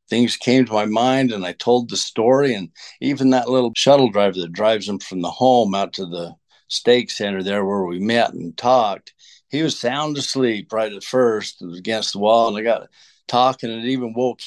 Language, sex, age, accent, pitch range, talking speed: English, male, 60-79, American, 105-135 Hz, 220 wpm